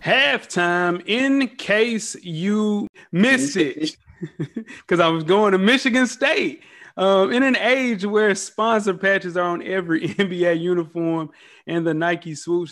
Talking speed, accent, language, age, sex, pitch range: 135 wpm, American, English, 30-49, male, 155-220 Hz